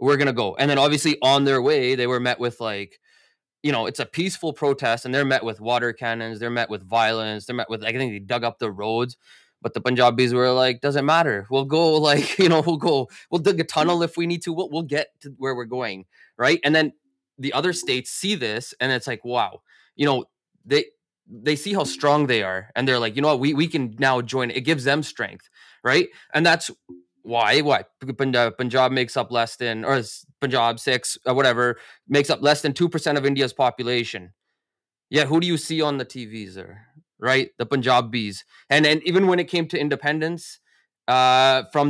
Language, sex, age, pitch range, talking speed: English, male, 20-39, 120-150 Hz, 215 wpm